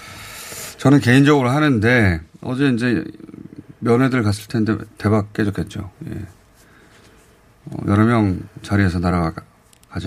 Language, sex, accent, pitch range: Korean, male, native, 100-135 Hz